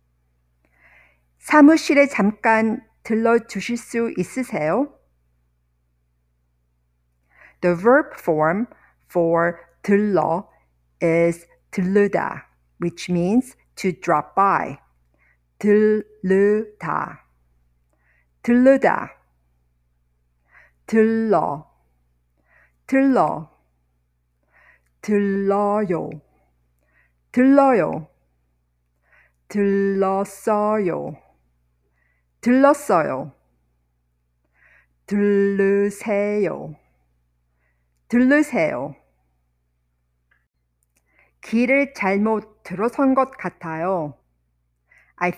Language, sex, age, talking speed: English, female, 50-69, 45 wpm